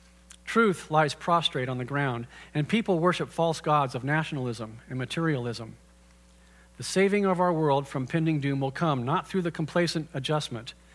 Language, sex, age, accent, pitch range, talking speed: English, male, 40-59, American, 115-165 Hz, 165 wpm